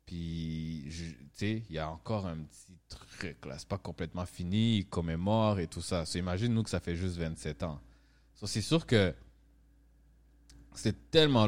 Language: English